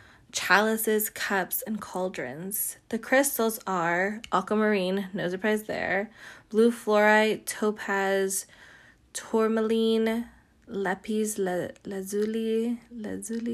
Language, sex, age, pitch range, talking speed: English, female, 20-39, 200-235 Hz, 80 wpm